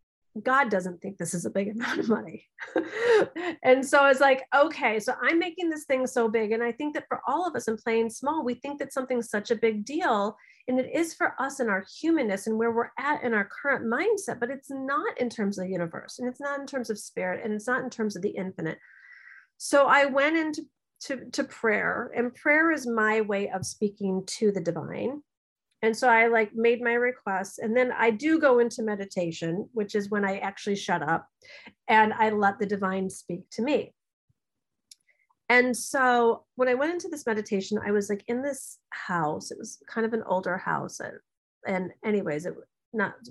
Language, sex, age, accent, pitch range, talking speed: English, female, 40-59, American, 200-275 Hz, 210 wpm